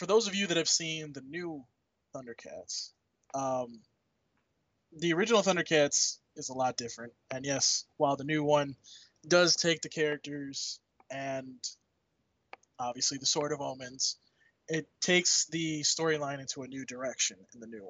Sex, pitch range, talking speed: male, 130-160 Hz, 150 wpm